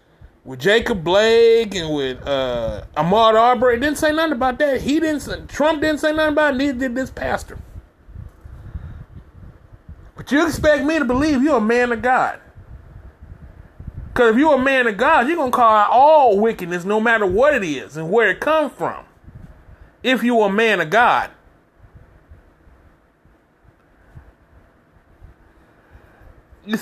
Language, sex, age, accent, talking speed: English, male, 30-49, American, 155 wpm